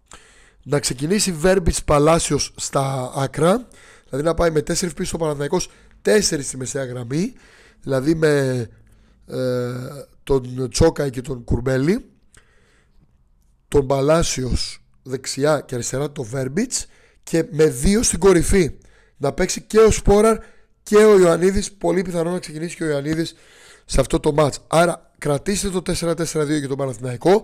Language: Greek